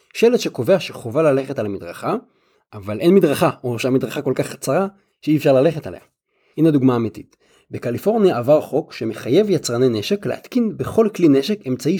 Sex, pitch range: male, 115-185 Hz